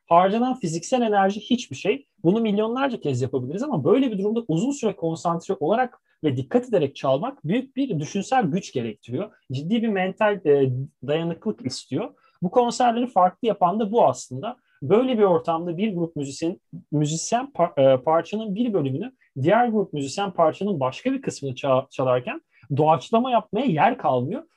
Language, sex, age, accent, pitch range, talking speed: Turkish, male, 40-59, native, 145-225 Hz, 145 wpm